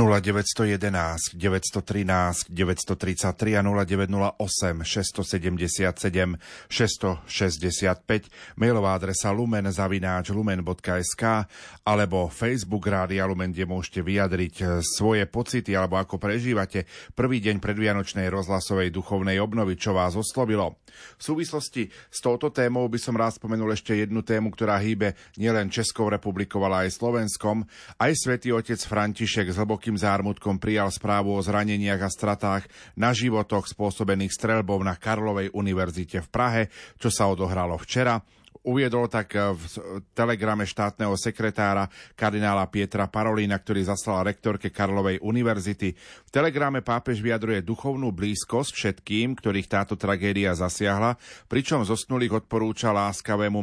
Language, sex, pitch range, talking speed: Slovak, male, 95-110 Hz, 115 wpm